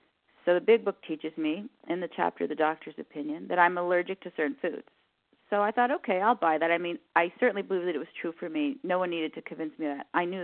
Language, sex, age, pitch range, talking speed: English, female, 40-59, 170-250 Hz, 260 wpm